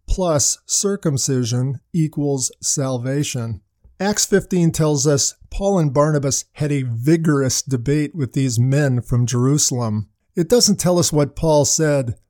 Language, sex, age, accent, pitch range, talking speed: English, male, 50-69, American, 135-160 Hz, 130 wpm